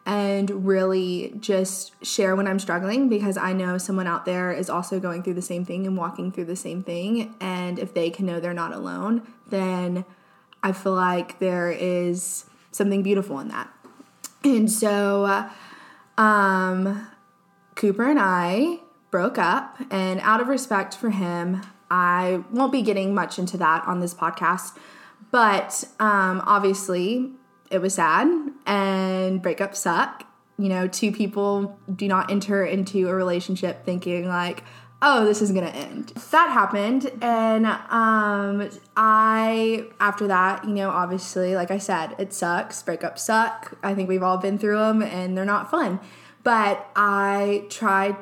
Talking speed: 155 wpm